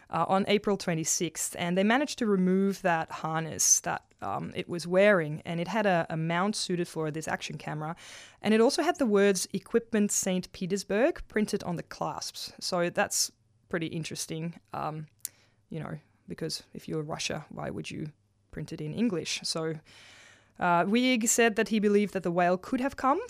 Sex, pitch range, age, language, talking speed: female, 155-195 Hz, 20-39, English, 185 wpm